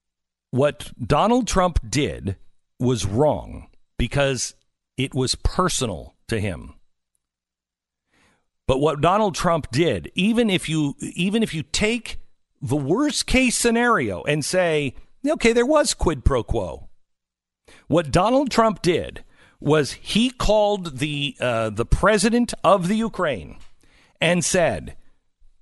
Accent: American